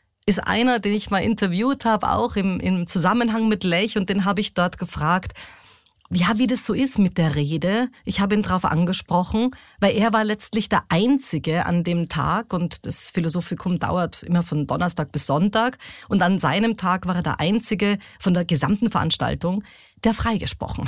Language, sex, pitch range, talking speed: German, female, 150-220 Hz, 185 wpm